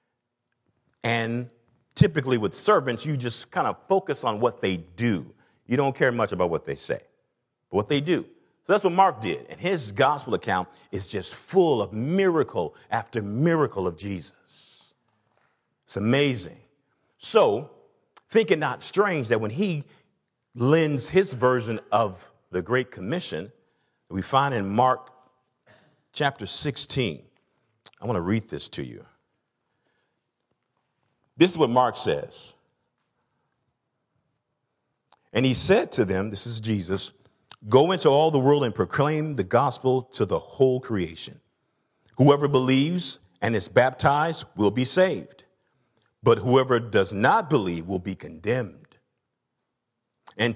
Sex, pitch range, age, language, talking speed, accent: male, 110-150 Hz, 50-69, English, 140 wpm, American